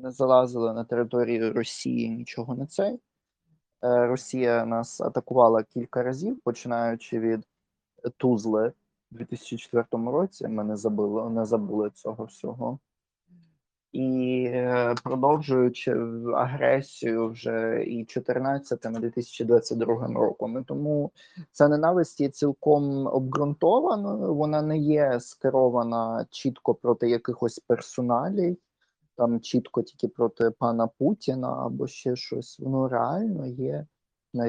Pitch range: 115-140 Hz